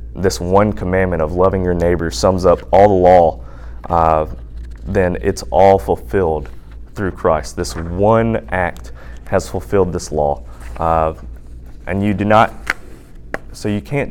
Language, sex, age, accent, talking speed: English, male, 20-39, American, 145 wpm